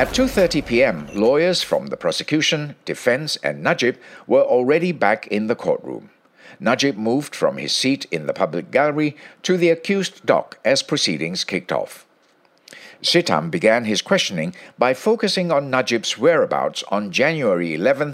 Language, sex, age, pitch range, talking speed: English, male, 60-79, 125-180 Hz, 150 wpm